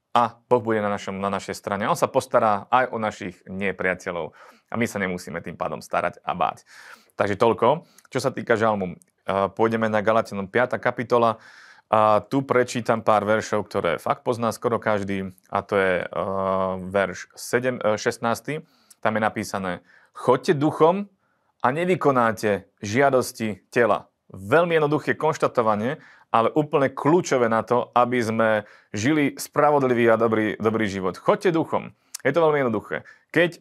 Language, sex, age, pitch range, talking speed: Slovak, male, 30-49, 105-130 Hz, 150 wpm